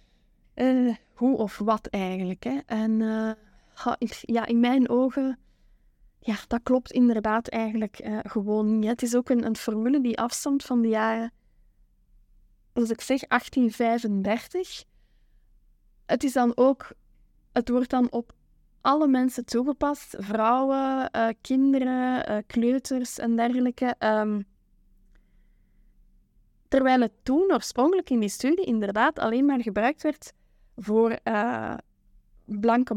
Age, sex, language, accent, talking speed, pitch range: 10-29, female, Dutch, Dutch, 130 wpm, 210-255 Hz